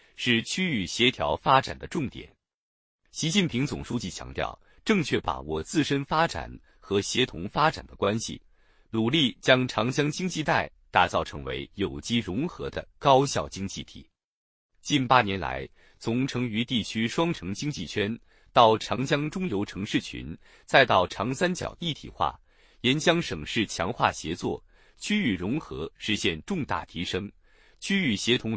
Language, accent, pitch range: Chinese, native, 100-150 Hz